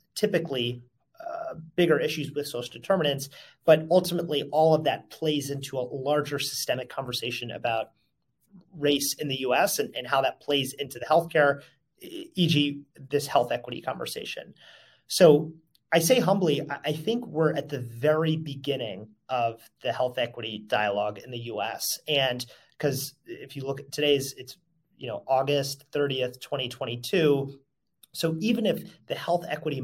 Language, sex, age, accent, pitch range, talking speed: English, male, 30-49, American, 125-160 Hz, 150 wpm